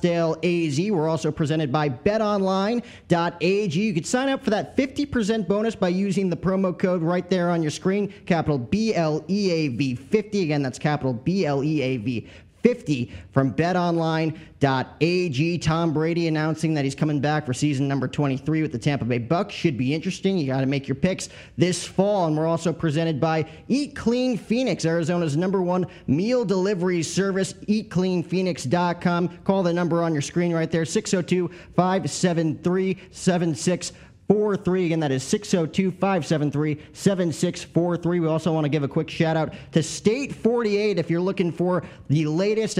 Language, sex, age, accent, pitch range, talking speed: English, male, 30-49, American, 155-185 Hz, 145 wpm